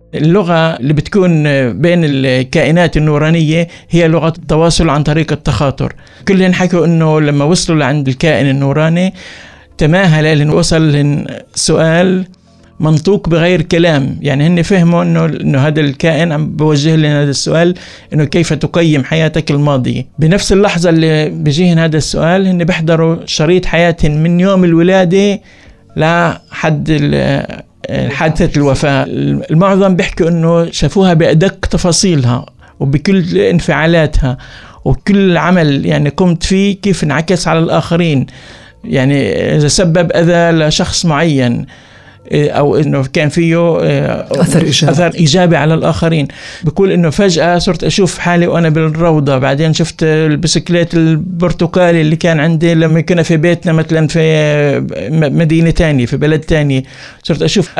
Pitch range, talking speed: 150-175 Hz, 125 wpm